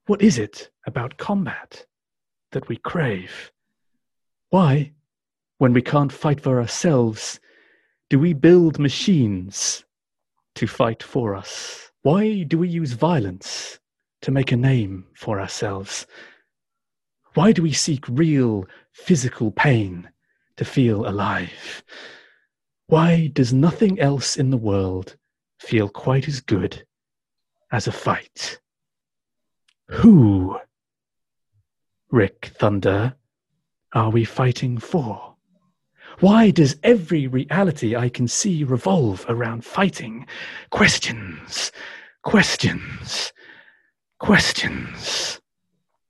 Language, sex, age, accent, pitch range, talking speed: English, male, 30-49, British, 115-160 Hz, 100 wpm